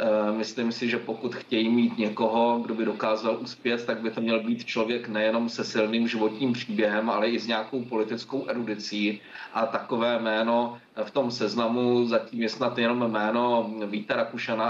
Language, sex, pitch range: Czech, male, 115-130 Hz